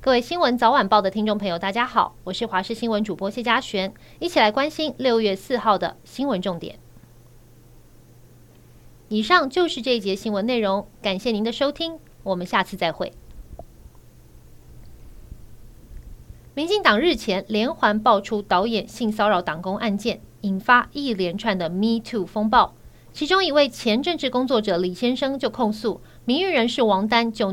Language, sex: Chinese, female